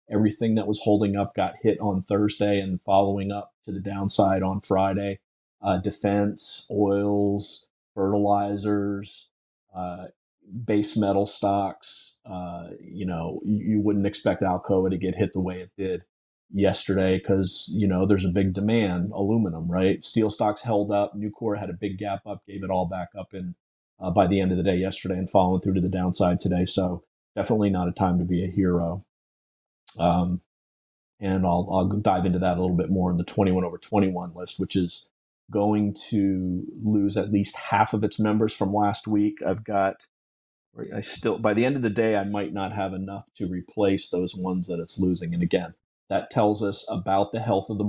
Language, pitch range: English, 90-100 Hz